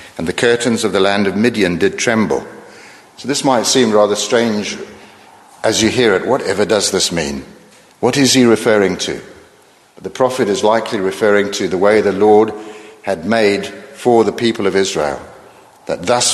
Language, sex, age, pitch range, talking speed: English, male, 60-79, 100-115 Hz, 175 wpm